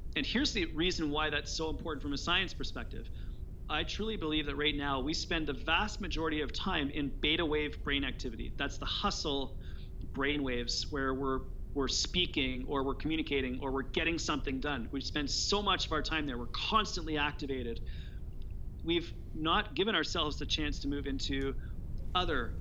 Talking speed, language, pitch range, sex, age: 180 wpm, English, 135-150 Hz, male, 30-49